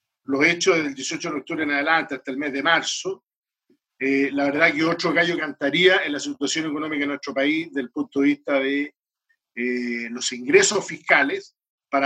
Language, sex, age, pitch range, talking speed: Spanish, male, 50-69, 140-185 Hz, 195 wpm